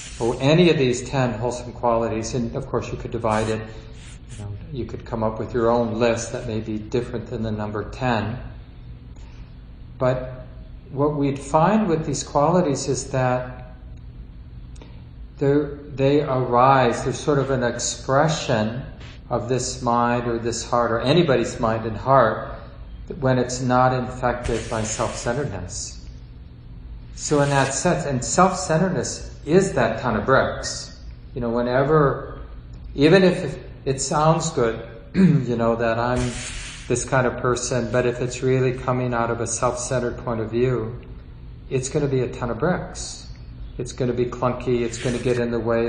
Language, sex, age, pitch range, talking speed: English, male, 40-59, 115-135 Hz, 160 wpm